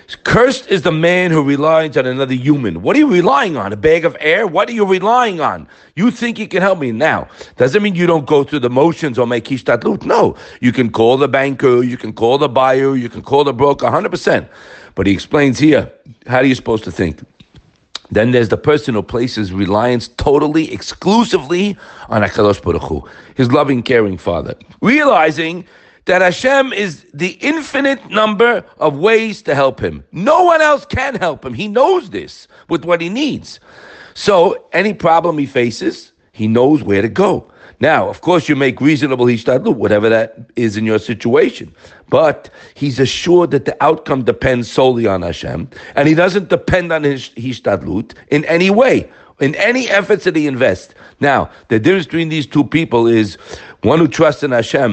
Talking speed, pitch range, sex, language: 190 wpm, 120-185 Hz, male, English